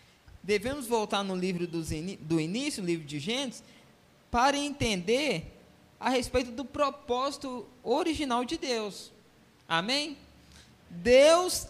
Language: Portuguese